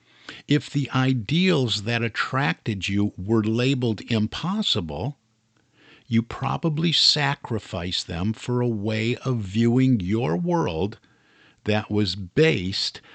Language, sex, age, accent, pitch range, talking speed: English, male, 50-69, American, 105-130 Hz, 105 wpm